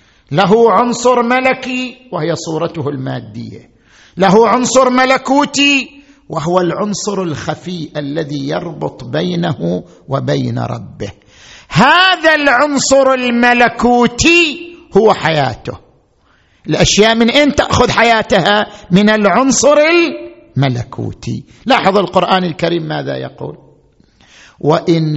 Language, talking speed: Arabic, 85 wpm